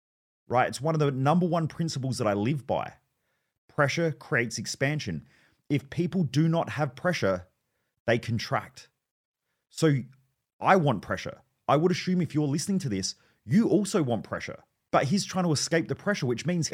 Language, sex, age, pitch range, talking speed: English, male, 30-49, 115-160 Hz, 170 wpm